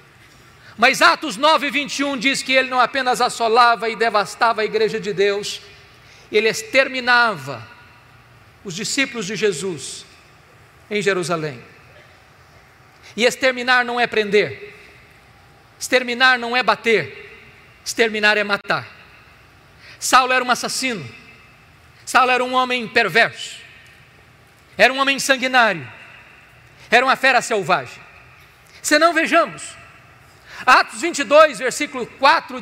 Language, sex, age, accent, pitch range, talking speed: Portuguese, male, 50-69, Brazilian, 195-290 Hz, 110 wpm